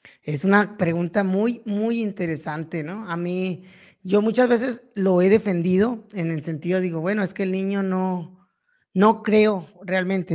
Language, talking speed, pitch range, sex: Spanish, 160 wpm, 175-215 Hz, male